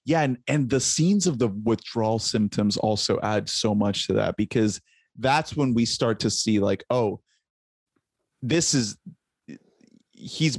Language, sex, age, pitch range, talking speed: English, male, 30-49, 110-145 Hz, 155 wpm